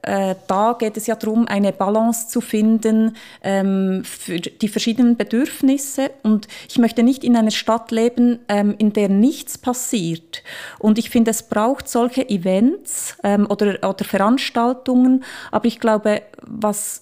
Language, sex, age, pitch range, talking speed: German, female, 30-49, 205-240 Hz, 150 wpm